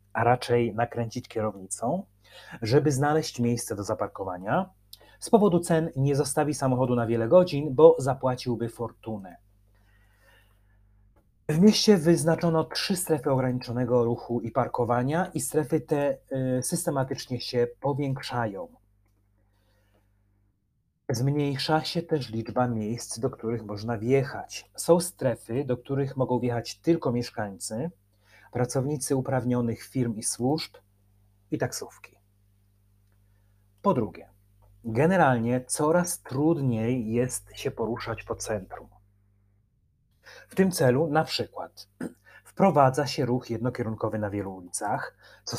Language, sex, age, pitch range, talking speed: Polish, male, 30-49, 105-140 Hz, 110 wpm